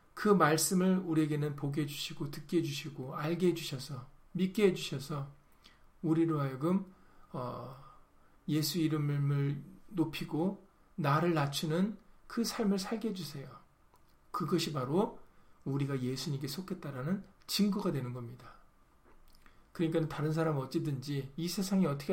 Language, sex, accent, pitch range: Korean, male, native, 145-190 Hz